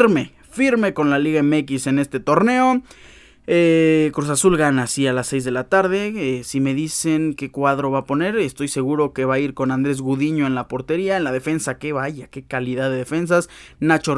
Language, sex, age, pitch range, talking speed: Spanish, male, 20-39, 135-175 Hz, 215 wpm